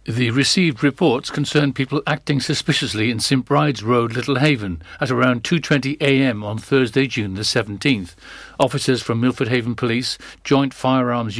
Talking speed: 145 wpm